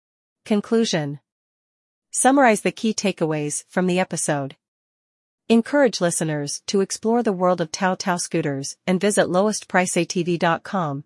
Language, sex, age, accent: English, female, 40-59, American